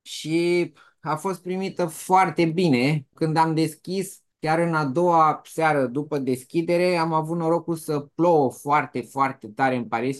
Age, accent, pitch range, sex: 20-39, Romanian, 145-180 Hz, male